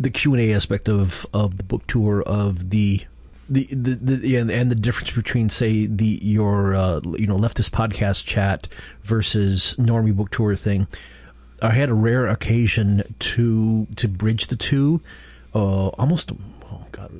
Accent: American